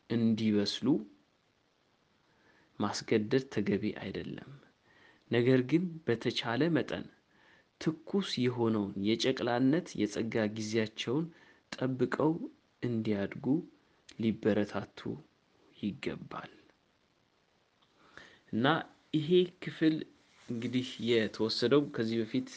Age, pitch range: 30-49, 110-130 Hz